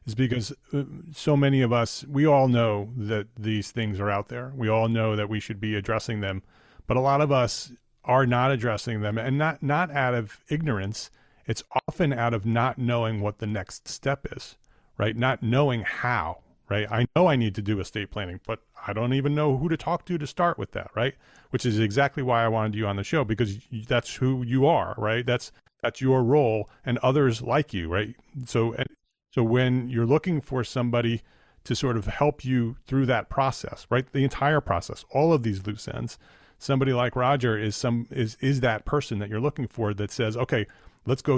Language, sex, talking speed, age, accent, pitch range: English, male, 210 wpm, 40-59, American, 110-135 Hz